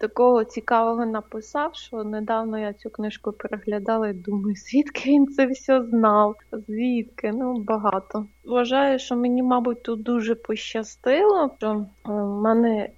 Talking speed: 135 wpm